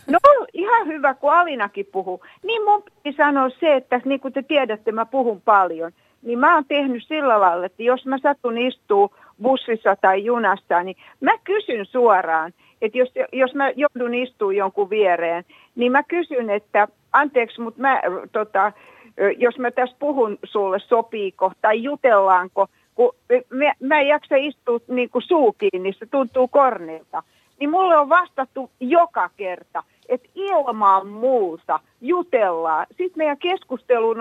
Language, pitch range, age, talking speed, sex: Finnish, 200-290 Hz, 60-79, 155 wpm, female